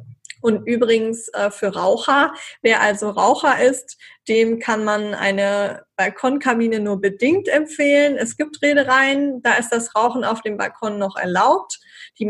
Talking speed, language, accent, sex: 140 wpm, German, German, female